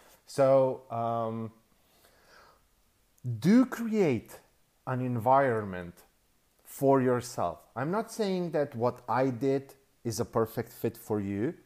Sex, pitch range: male, 100-130 Hz